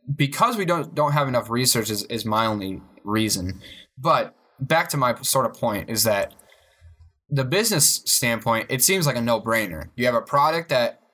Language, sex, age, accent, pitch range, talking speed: English, male, 10-29, American, 115-150 Hz, 185 wpm